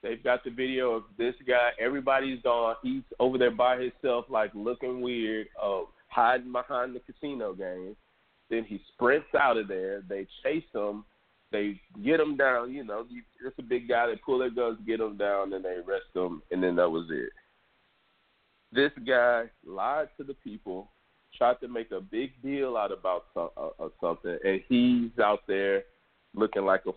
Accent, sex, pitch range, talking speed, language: American, male, 105-125 Hz, 180 wpm, English